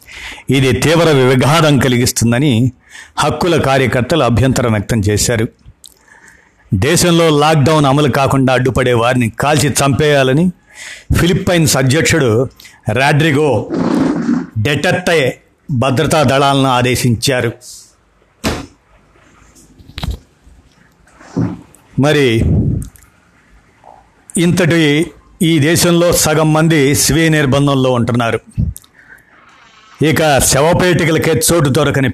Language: Telugu